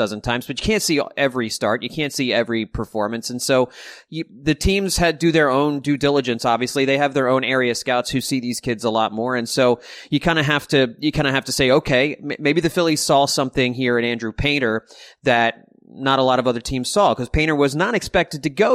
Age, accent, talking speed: 30-49, American, 240 wpm